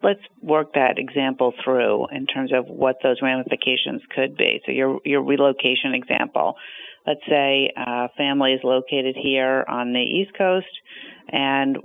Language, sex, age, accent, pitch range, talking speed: English, female, 50-69, American, 130-155 Hz, 150 wpm